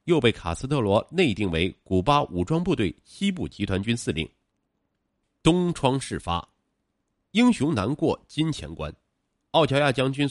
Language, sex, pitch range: Chinese, male, 85-135 Hz